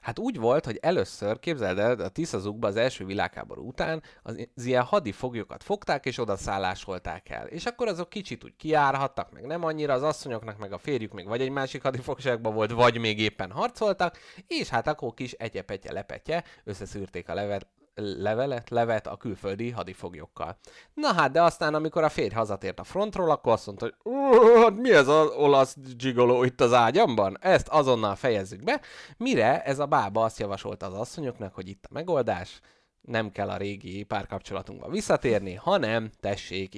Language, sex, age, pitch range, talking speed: Hungarian, male, 30-49, 100-145 Hz, 170 wpm